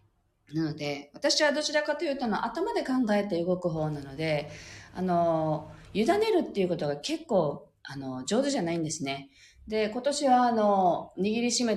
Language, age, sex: Japanese, 40-59, female